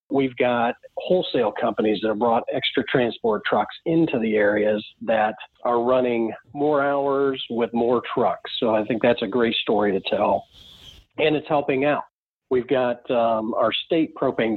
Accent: American